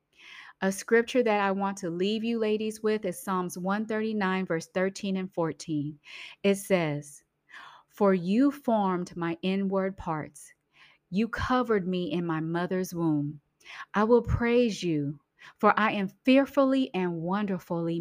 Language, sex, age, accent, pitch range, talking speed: English, female, 30-49, American, 165-210 Hz, 140 wpm